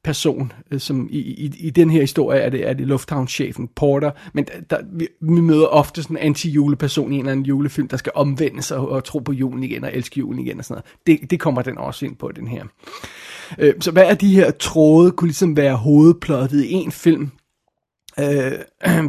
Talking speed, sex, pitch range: 220 wpm, male, 140-160 Hz